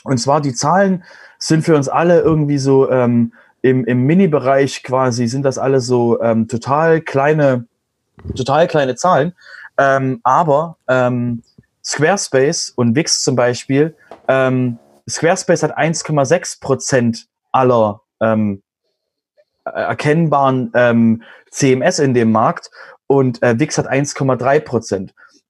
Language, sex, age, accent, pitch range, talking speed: German, male, 30-49, German, 120-155 Hz, 120 wpm